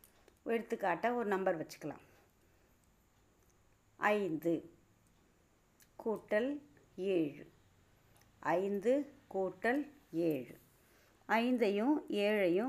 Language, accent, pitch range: Tamil, native, 170-255 Hz